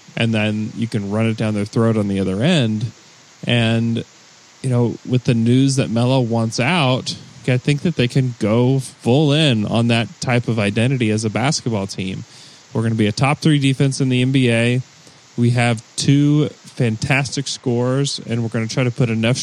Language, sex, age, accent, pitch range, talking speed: English, male, 30-49, American, 110-135 Hz, 200 wpm